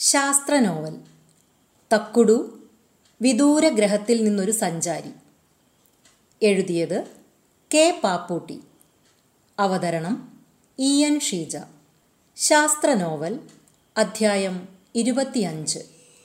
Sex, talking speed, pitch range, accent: female, 60 wpm, 180-250 Hz, native